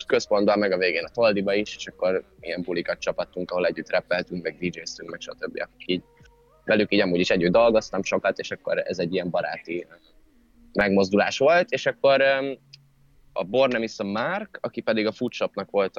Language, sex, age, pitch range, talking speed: Hungarian, male, 20-39, 90-125 Hz, 170 wpm